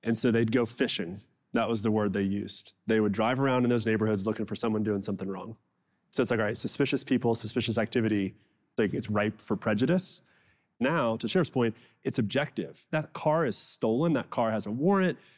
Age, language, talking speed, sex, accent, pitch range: 30-49, English, 210 wpm, male, American, 110-135 Hz